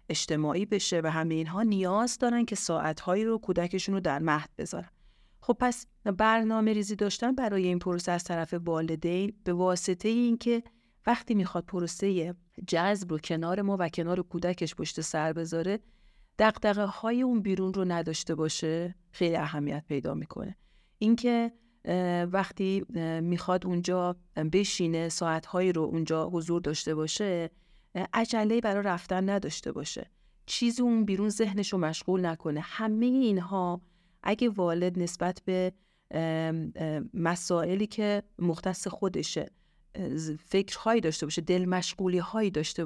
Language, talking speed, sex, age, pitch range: Persian, 130 wpm, female, 40-59, 170-215 Hz